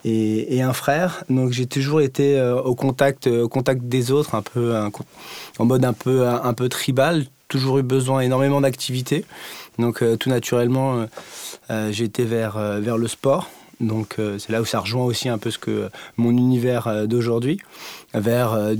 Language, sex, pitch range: French, male, 115-135 Hz